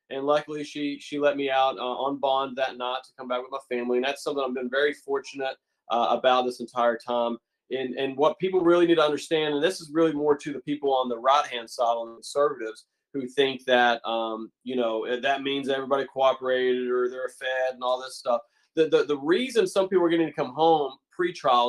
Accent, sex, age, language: American, male, 30-49, English